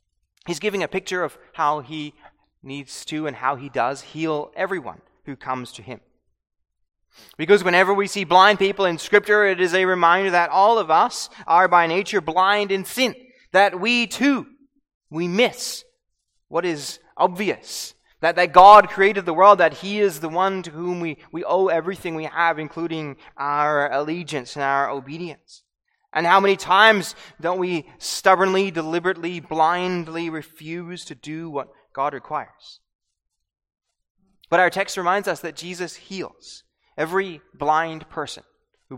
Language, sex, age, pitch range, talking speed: English, male, 20-39, 165-210 Hz, 155 wpm